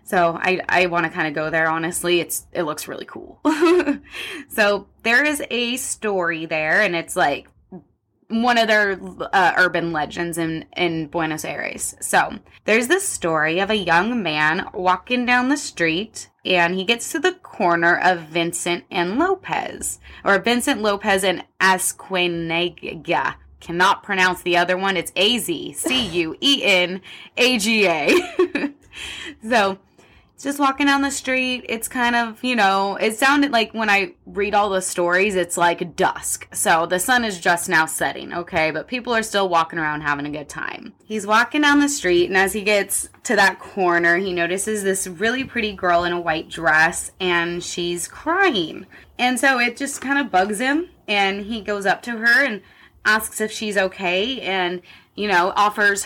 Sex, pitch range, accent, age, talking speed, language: female, 175-240 Hz, American, 20-39, 175 wpm, English